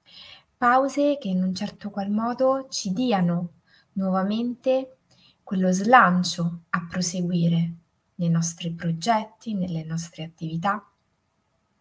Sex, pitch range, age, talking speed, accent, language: female, 175-225 Hz, 20-39, 100 wpm, native, Italian